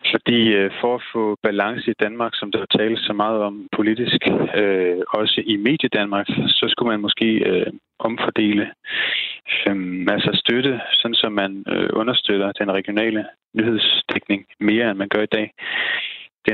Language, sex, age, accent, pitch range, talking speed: Danish, male, 30-49, native, 100-110 Hz, 165 wpm